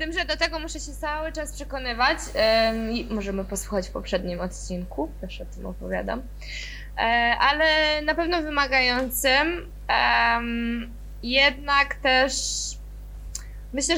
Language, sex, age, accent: Polish, female, 20-39, native